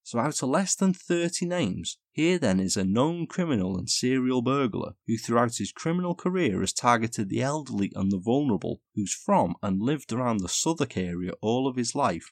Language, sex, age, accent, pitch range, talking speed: English, male, 30-49, British, 100-135 Hz, 195 wpm